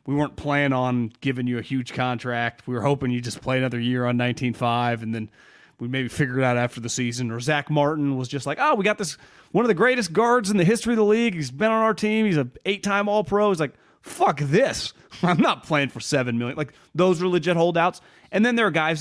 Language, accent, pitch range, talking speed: English, American, 120-165 Hz, 255 wpm